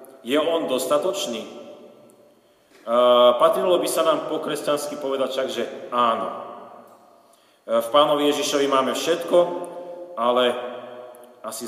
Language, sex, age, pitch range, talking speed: Slovak, male, 40-59, 125-150 Hz, 105 wpm